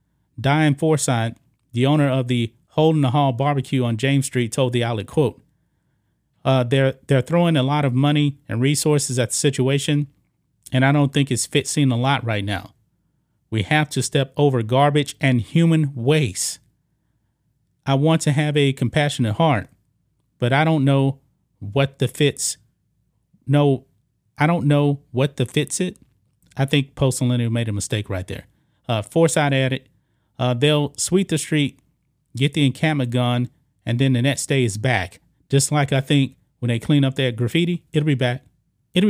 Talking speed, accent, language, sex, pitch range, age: 170 wpm, American, English, male, 125-145 Hz, 30-49